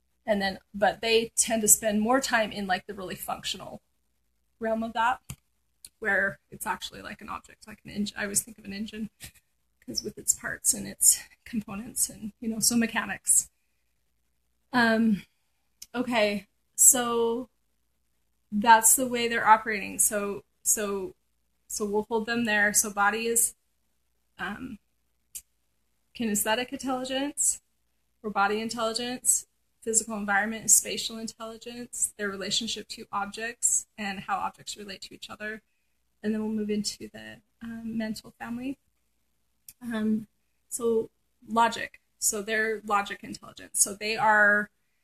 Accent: American